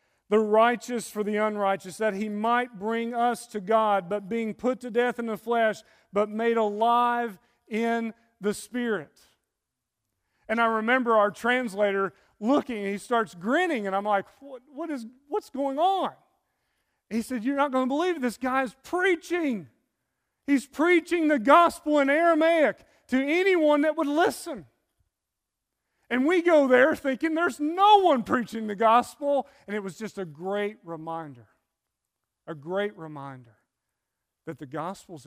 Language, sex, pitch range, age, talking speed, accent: English, male, 205-260 Hz, 40-59, 155 wpm, American